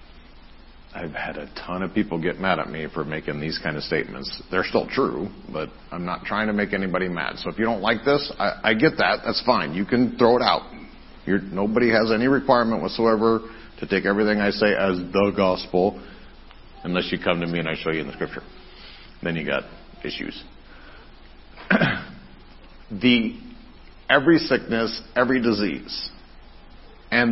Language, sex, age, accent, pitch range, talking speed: English, male, 50-69, American, 90-130 Hz, 175 wpm